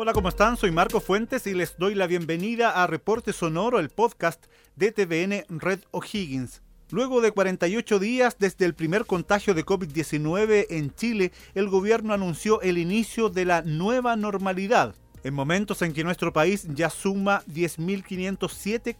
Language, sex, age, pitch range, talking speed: Spanish, male, 40-59, 165-205 Hz, 160 wpm